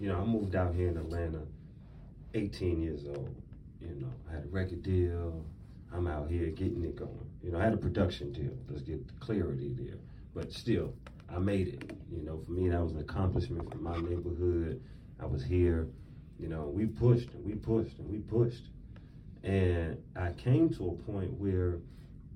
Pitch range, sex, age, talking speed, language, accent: 85-100 Hz, male, 30-49, 195 wpm, English, American